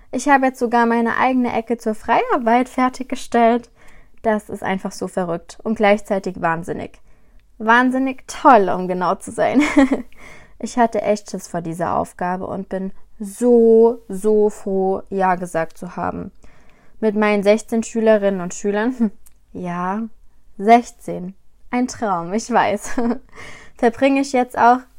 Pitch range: 195-255 Hz